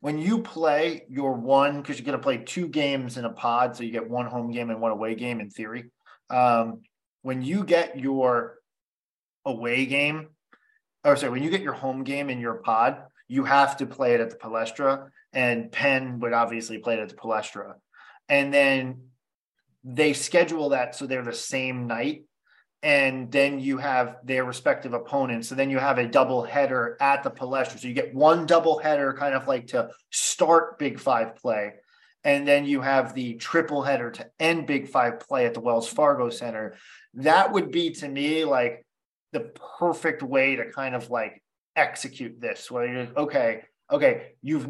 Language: English